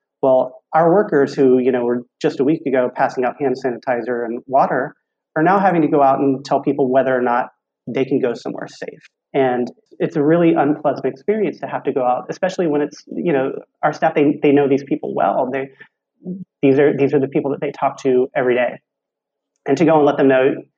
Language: English